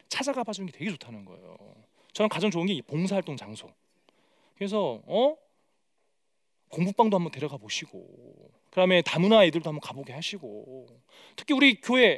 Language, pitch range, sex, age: Korean, 185-275 Hz, male, 30-49